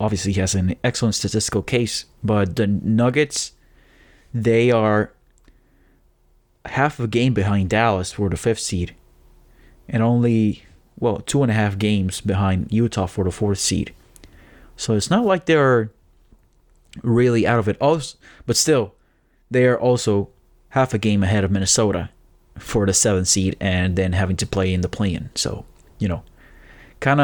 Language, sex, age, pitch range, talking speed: English, male, 30-49, 95-120 Hz, 155 wpm